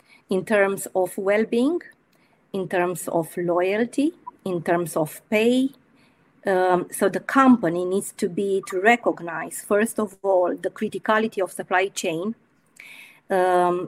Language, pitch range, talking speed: English, 185-230 Hz, 130 wpm